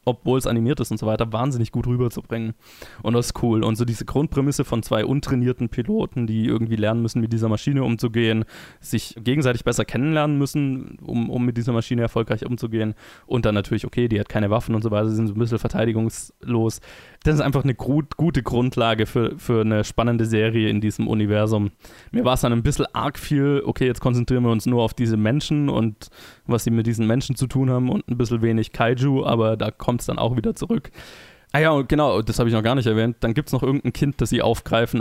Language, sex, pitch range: German, male, 110-130 Hz